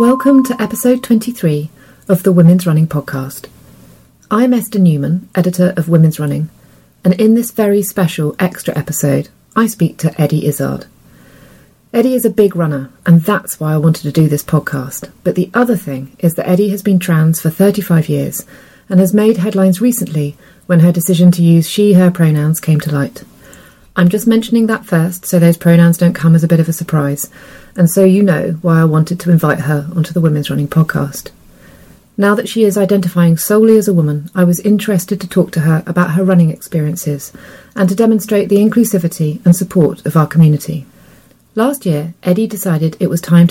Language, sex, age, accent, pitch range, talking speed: English, female, 30-49, British, 155-200 Hz, 190 wpm